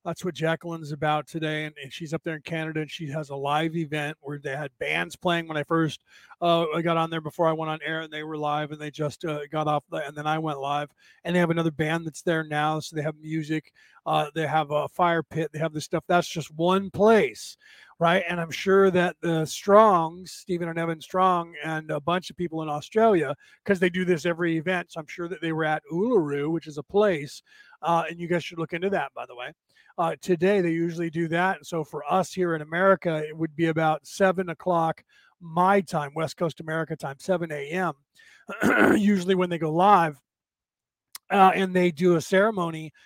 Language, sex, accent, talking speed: English, male, American, 220 wpm